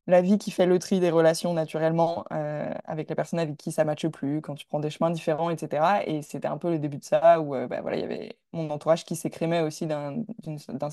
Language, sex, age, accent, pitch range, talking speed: French, female, 20-39, French, 155-180 Hz, 270 wpm